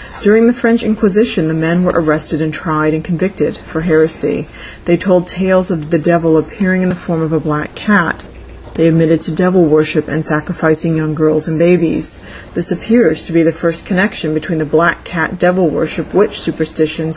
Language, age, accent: English, 30-49, American